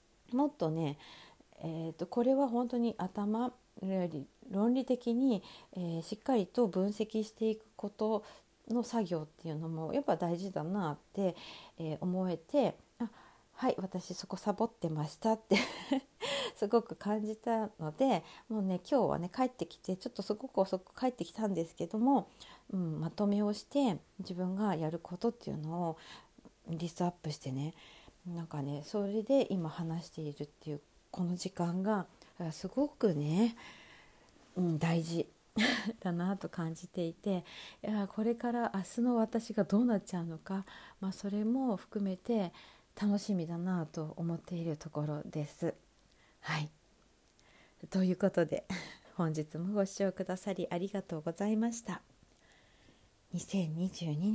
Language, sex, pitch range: Japanese, female, 170-220 Hz